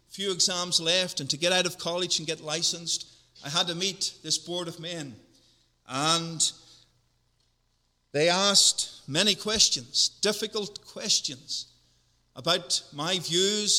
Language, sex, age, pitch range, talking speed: English, male, 50-69, 145-195 Hz, 130 wpm